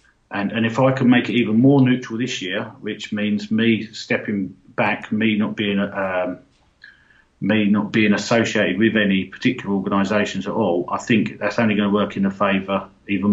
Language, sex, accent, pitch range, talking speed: English, male, British, 105-120 Hz, 190 wpm